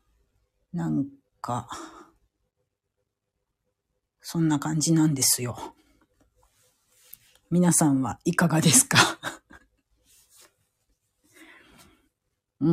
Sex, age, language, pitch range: female, 40-59, Japanese, 140-185 Hz